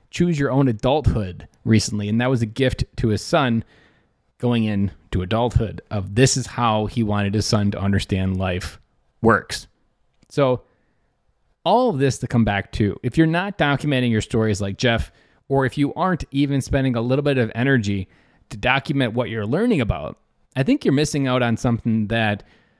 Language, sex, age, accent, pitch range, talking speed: English, male, 20-39, American, 110-155 Hz, 180 wpm